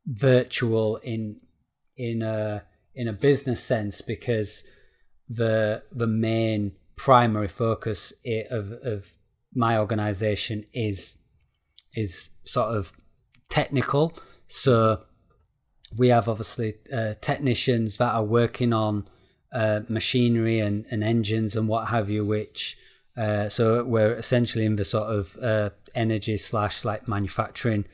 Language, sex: English, male